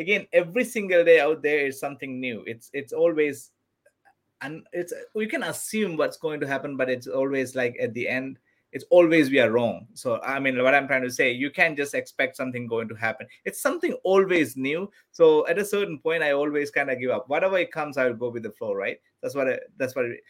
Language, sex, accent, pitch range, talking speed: English, male, Indian, 125-175 Hz, 230 wpm